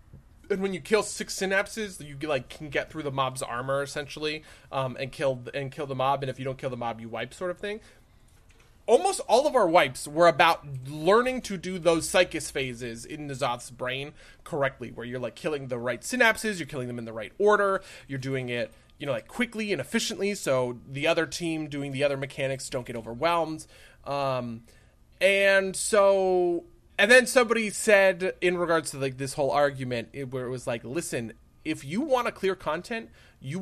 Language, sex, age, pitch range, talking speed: English, male, 30-49, 125-175 Hz, 200 wpm